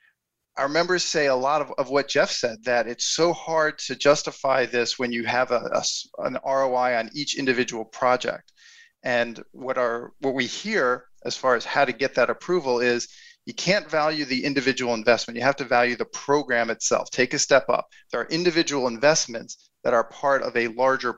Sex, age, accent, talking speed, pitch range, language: male, 40-59, American, 200 wpm, 120-145 Hz, English